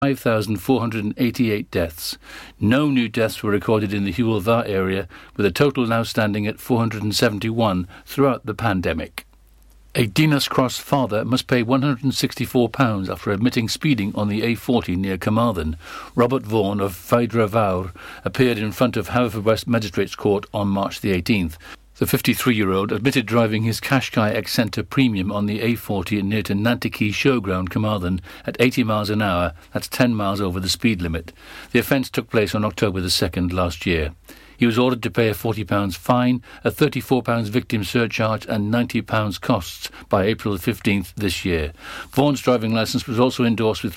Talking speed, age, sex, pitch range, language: 160 wpm, 50-69, male, 100-125 Hz, English